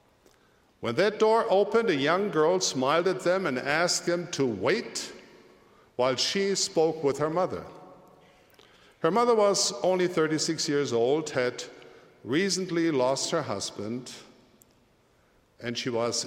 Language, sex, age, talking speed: English, male, 60-79, 135 wpm